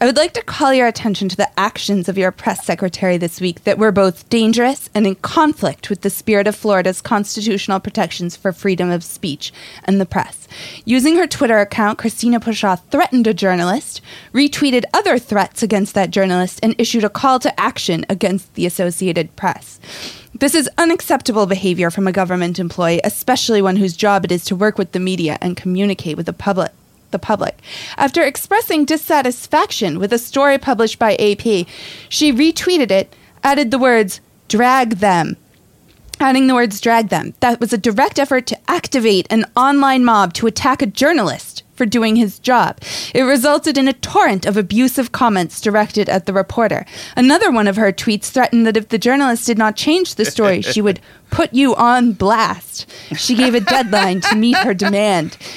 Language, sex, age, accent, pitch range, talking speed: English, female, 20-39, American, 195-265 Hz, 185 wpm